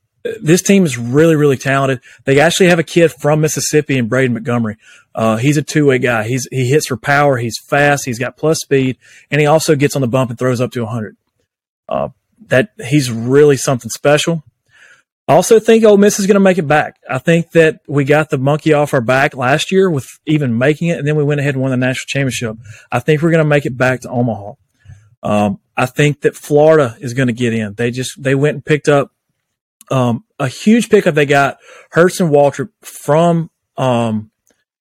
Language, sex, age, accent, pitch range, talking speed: English, male, 30-49, American, 125-150 Hz, 210 wpm